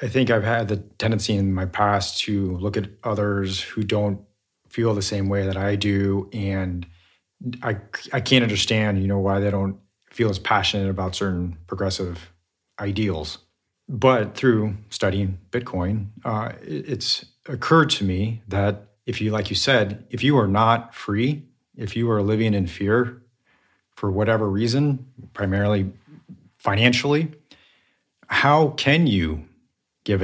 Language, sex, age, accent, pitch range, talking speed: English, male, 30-49, American, 90-110 Hz, 145 wpm